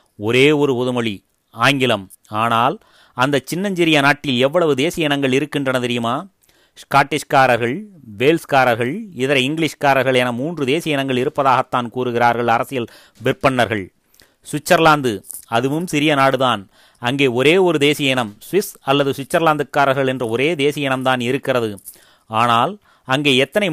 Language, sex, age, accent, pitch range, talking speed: Tamil, male, 30-49, native, 125-150 Hz, 115 wpm